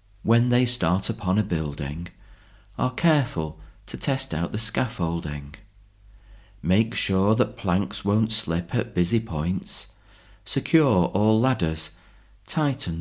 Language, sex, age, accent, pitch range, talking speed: English, male, 40-59, British, 95-120 Hz, 120 wpm